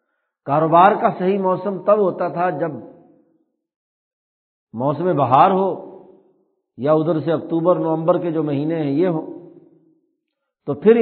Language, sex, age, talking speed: Urdu, male, 60-79, 130 wpm